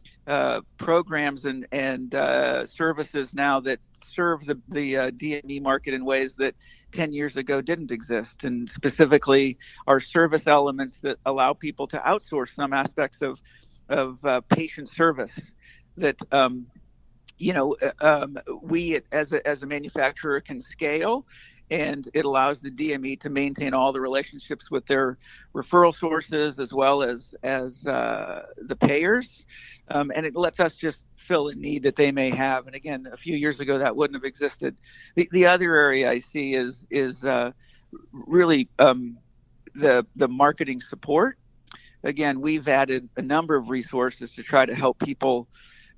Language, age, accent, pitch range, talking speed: English, 50-69, American, 135-155 Hz, 160 wpm